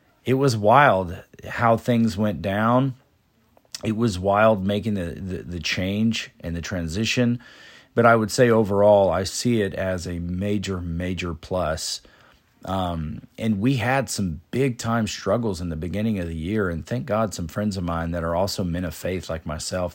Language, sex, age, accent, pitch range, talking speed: English, male, 40-59, American, 90-115 Hz, 180 wpm